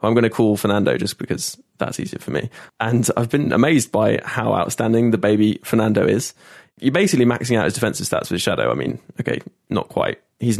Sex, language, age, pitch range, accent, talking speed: male, English, 20-39, 105-120 Hz, British, 210 wpm